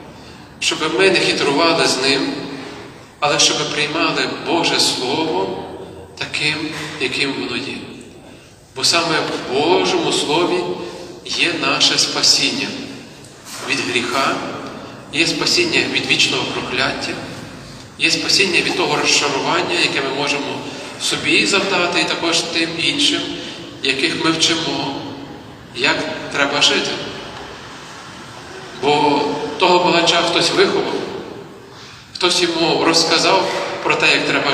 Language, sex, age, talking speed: Ukrainian, male, 40-59, 110 wpm